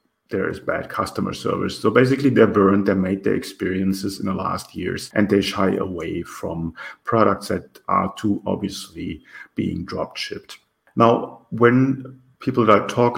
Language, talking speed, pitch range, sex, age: English, 165 wpm, 95-105 Hz, male, 50-69